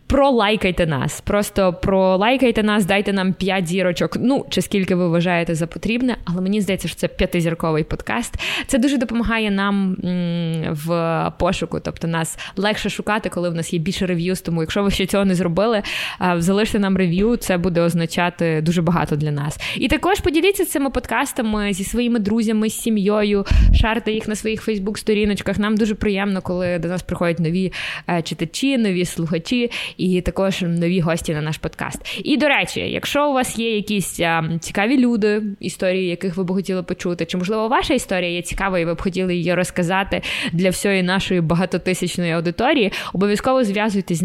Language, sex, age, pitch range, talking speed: Ukrainian, female, 20-39, 175-215 Hz, 170 wpm